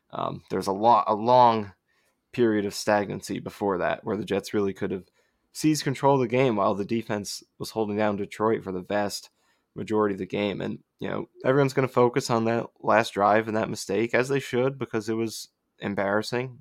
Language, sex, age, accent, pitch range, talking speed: English, male, 20-39, American, 105-120 Hz, 205 wpm